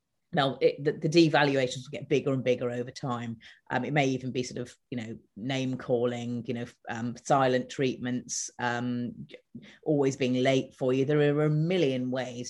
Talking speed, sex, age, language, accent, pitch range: 185 wpm, female, 30-49, English, British, 125-165 Hz